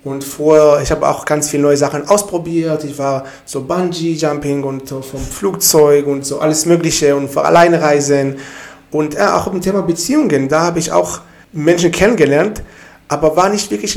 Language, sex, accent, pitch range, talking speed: German, male, German, 145-185 Hz, 185 wpm